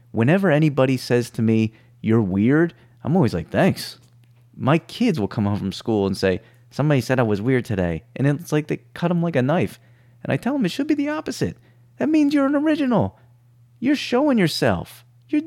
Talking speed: 205 wpm